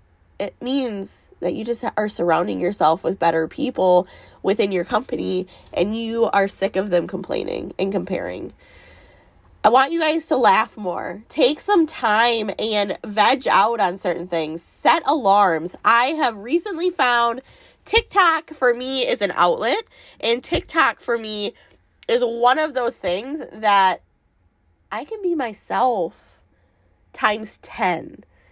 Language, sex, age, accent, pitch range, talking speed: English, female, 20-39, American, 180-255 Hz, 140 wpm